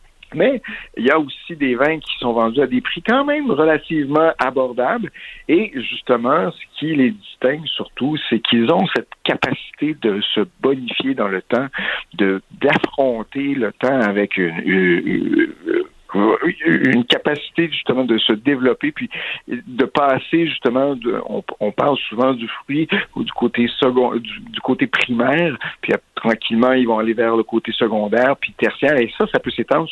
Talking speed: 170 wpm